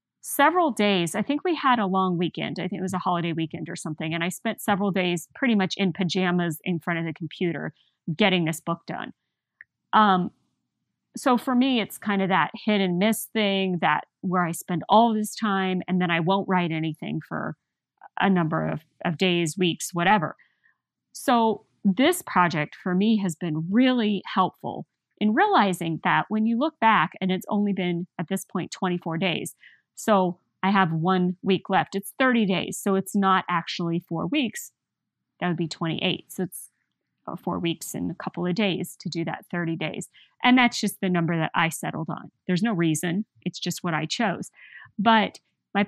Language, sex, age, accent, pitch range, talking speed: English, female, 40-59, American, 175-215 Hz, 190 wpm